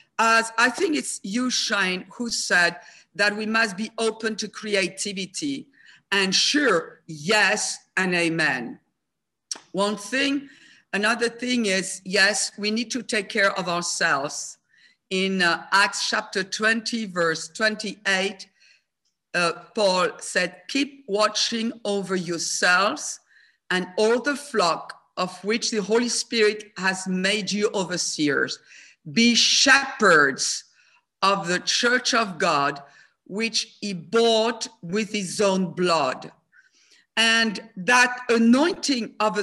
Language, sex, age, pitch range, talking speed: English, female, 50-69, 185-230 Hz, 115 wpm